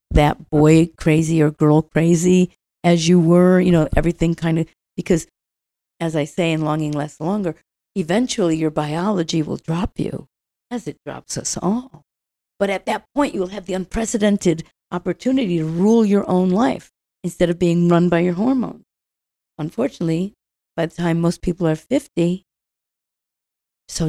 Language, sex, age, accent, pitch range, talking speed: English, female, 50-69, American, 160-190 Hz, 160 wpm